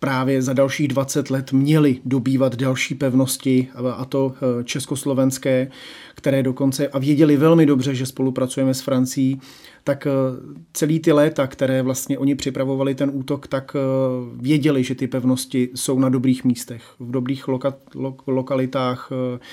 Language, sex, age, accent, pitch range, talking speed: Czech, male, 40-59, native, 130-145 Hz, 140 wpm